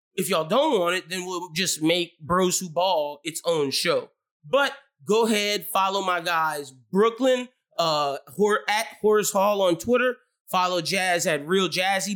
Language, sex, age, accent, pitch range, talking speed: English, male, 20-39, American, 165-210 Hz, 165 wpm